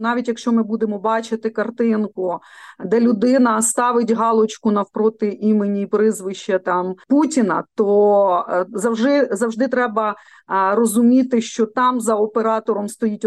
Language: Ukrainian